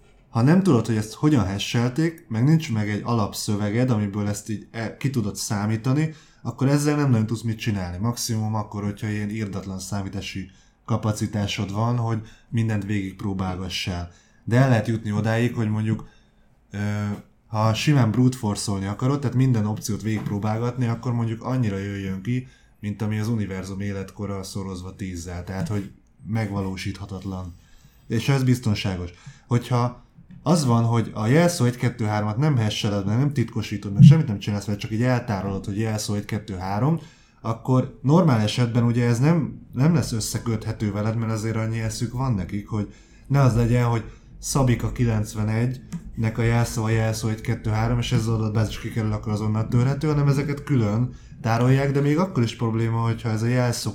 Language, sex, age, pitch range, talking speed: Hungarian, male, 20-39, 105-125 Hz, 160 wpm